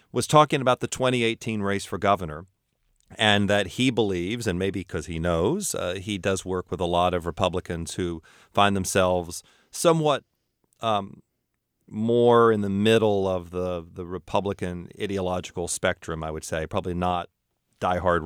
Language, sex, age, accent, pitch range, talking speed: English, male, 40-59, American, 90-110 Hz, 155 wpm